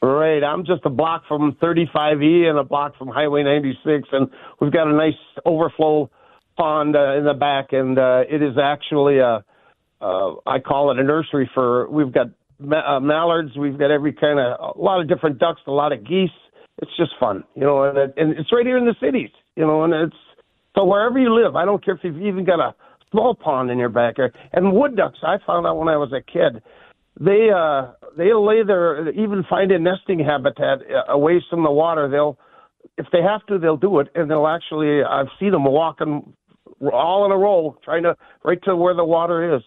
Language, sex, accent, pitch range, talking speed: English, male, American, 145-185 Hz, 215 wpm